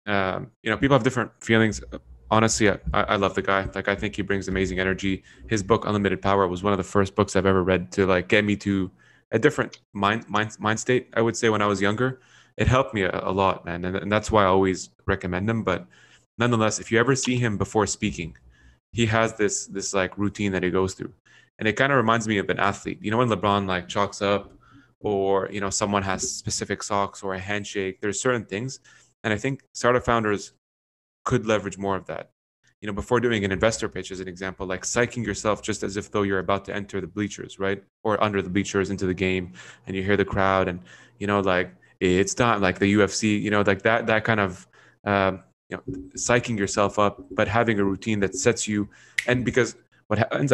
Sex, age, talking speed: male, 20-39, 230 wpm